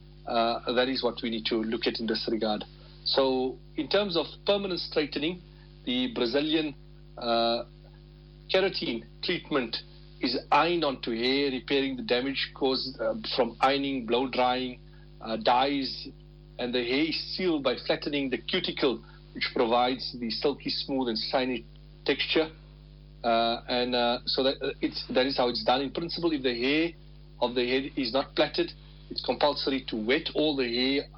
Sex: male